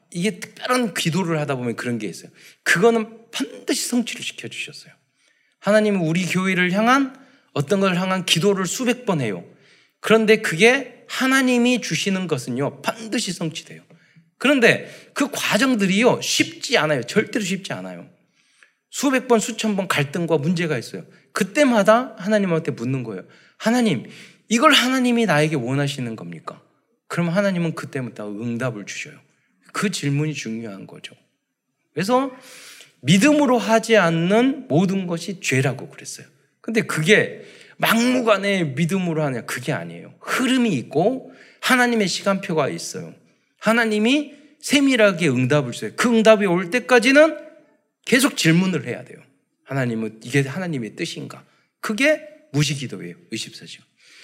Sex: male